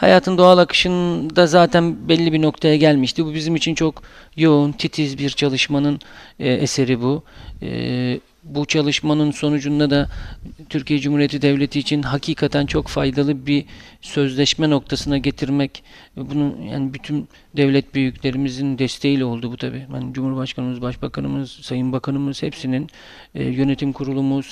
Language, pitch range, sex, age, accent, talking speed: Turkish, 130-145 Hz, male, 40-59, native, 120 wpm